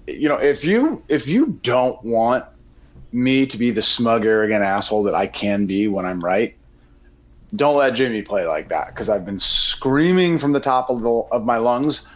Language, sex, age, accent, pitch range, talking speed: English, male, 30-49, American, 100-155 Hz, 190 wpm